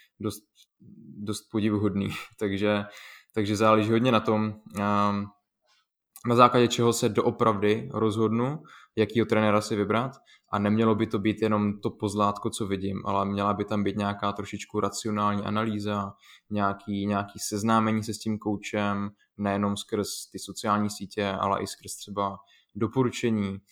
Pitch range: 100-110 Hz